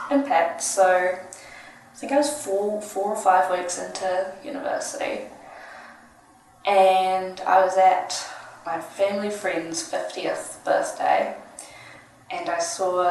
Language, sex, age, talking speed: English, female, 10-29, 110 wpm